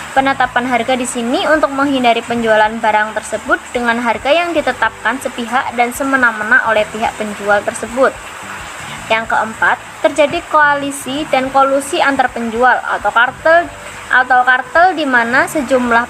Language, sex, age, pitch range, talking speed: Indonesian, male, 20-39, 230-285 Hz, 130 wpm